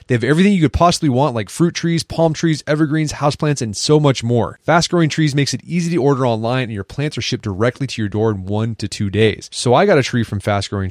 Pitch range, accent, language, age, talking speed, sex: 110-145 Hz, American, English, 30-49, 260 wpm, male